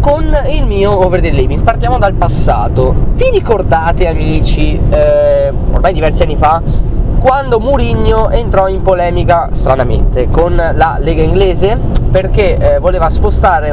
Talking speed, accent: 135 wpm, native